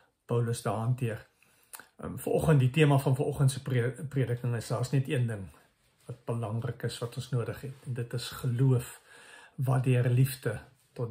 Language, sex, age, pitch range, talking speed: English, male, 50-69, 120-150 Hz, 155 wpm